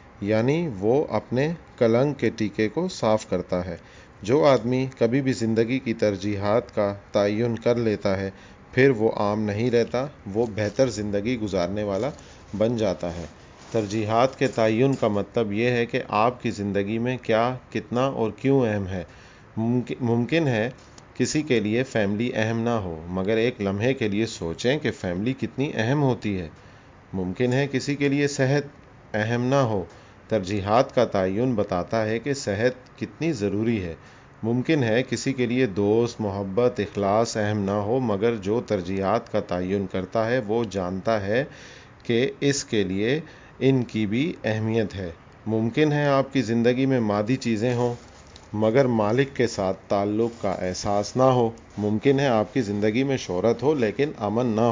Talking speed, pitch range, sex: 165 wpm, 100-125 Hz, male